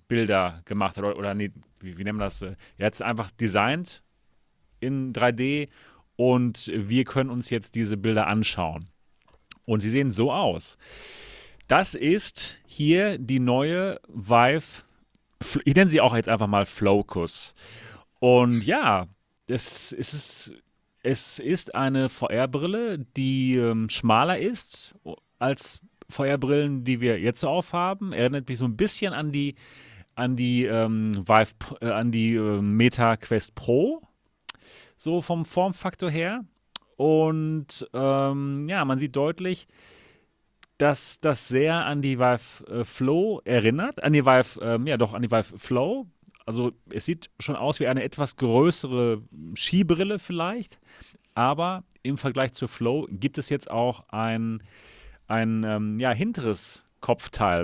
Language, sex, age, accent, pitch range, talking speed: German, male, 30-49, German, 110-150 Hz, 140 wpm